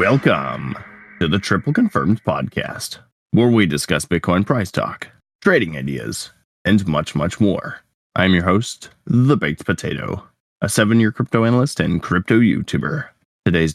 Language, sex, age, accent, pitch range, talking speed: English, male, 20-39, American, 85-110 Hz, 140 wpm